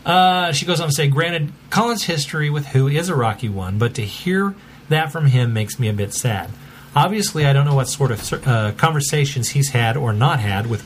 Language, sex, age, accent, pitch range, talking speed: English, male, 40-59, American, 120-150 Hz, 225 wpm